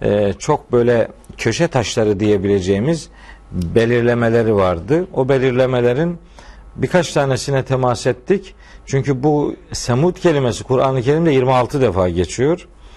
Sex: male